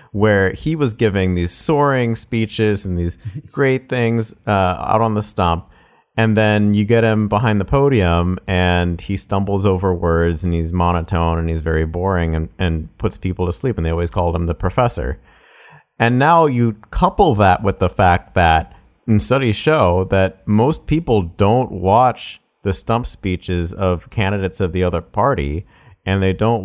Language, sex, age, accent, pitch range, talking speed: English, male, 30-49, American, 90-115 Hz, 175 wpm